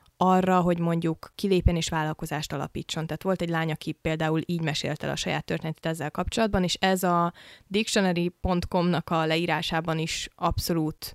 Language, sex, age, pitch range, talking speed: Hungarian, female, 20-39, 170-190 Hz, 155 wpm